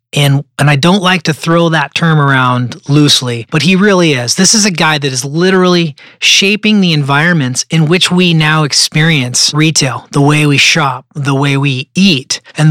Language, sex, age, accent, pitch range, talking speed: English, male, 30-49, American, 135-170 Hz, 190 wpm